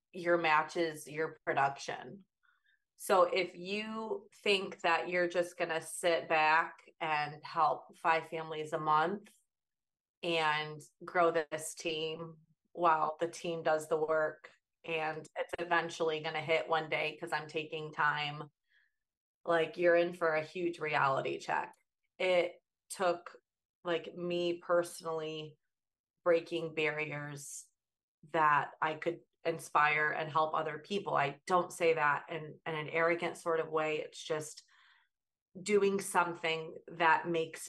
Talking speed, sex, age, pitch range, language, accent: 130 wpm, female, 30-49, 155-175 Hz, English, American